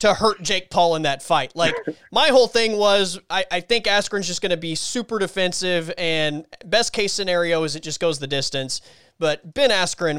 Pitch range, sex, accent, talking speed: 160-205 Hz, male, American, 200 wpm